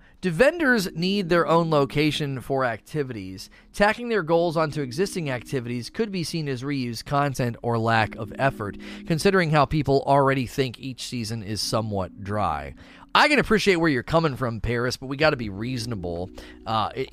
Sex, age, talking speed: male, 30-49, 170 wpm